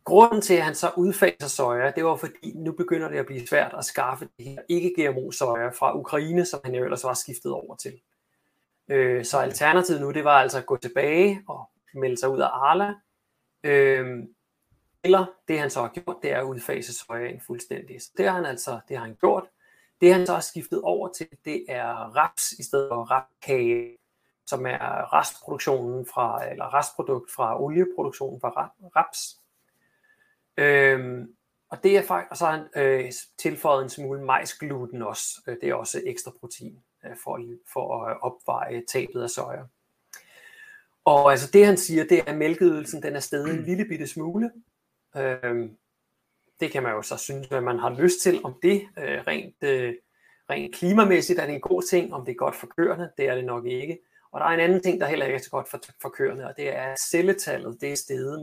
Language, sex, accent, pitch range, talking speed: Danish, male, native, 130-185 Hz, 195 wpm